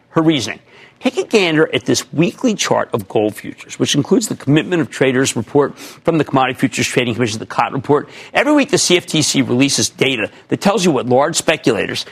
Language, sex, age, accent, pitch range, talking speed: English, male, 50-69, American, 130-185 Hz, 200 wpm